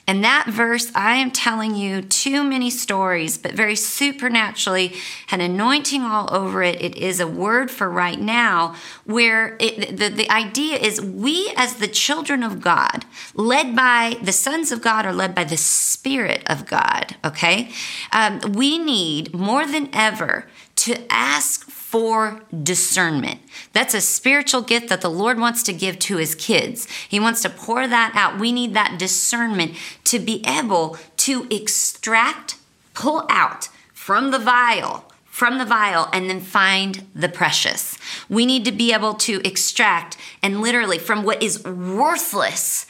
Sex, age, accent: female, 40-59, American